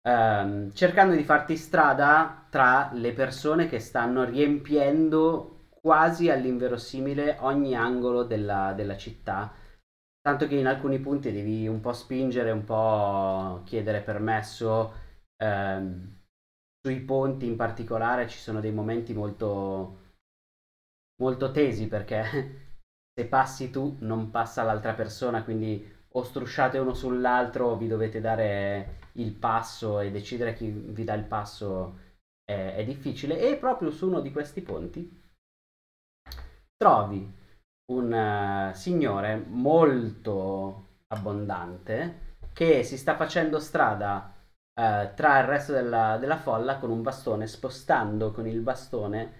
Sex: male